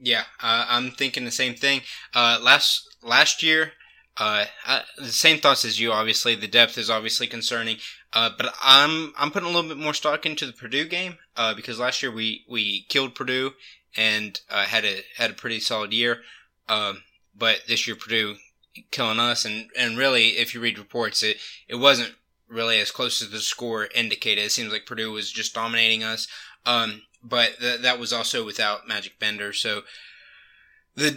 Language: English